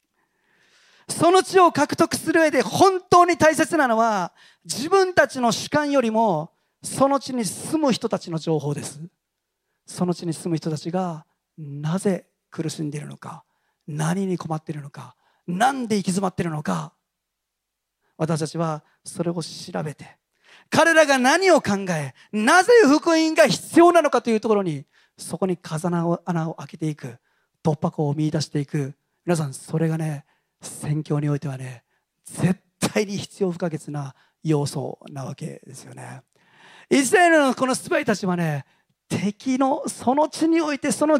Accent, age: native, 40-59